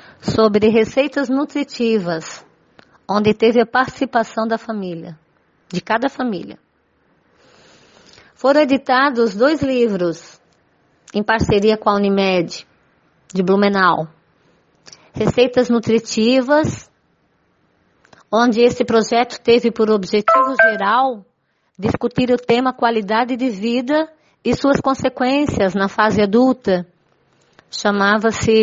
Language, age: Portuguese, 20-39